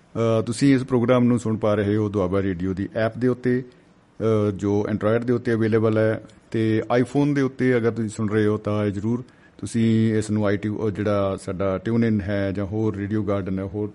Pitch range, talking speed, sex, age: 105-120 Hz, 200 wpm, male, 50-69